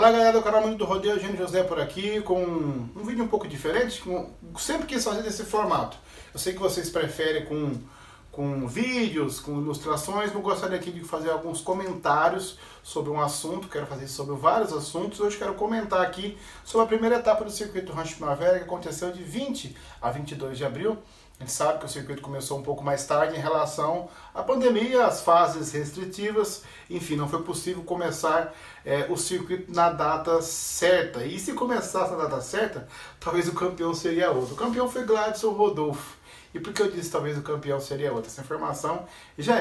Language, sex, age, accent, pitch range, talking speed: Portuguese, male, 40-59, Brazilian, 145-185 Hz, 190 wpm